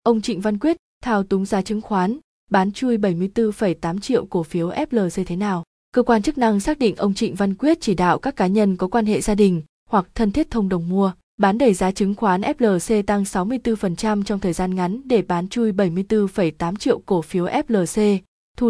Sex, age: female, 20-39